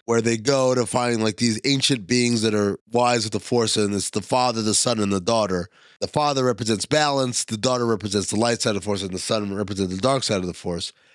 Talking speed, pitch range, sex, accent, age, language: 255 wpm, 120-155 Hz, male, American, 30-49, English